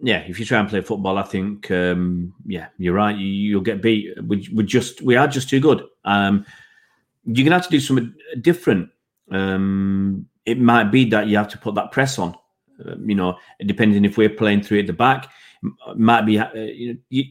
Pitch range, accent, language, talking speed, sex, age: 100-115 Hz, British, English, 210 wpm, male, 30-49